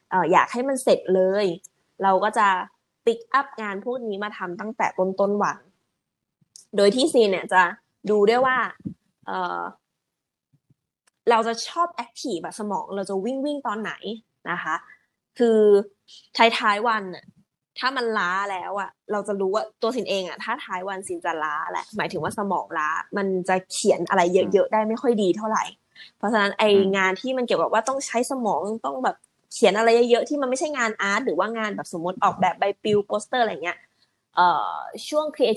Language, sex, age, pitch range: Thai, female, 20-39, 190-230 Hz